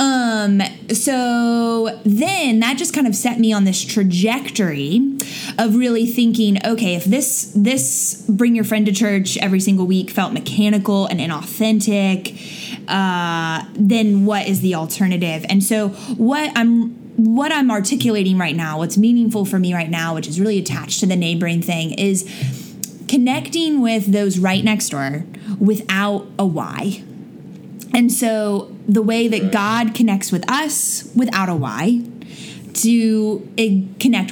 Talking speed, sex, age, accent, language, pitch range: 145 wpm, female, 10-29, American, English, 190-230 Hz